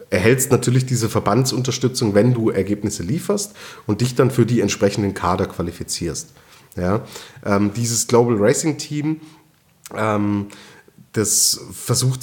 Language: German